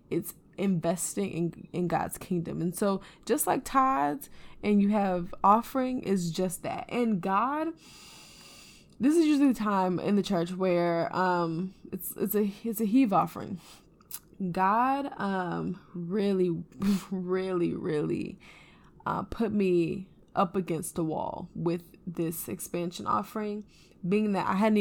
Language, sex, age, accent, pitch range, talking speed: English, female, 10-29, American, 180-235 Hz, 140 wpm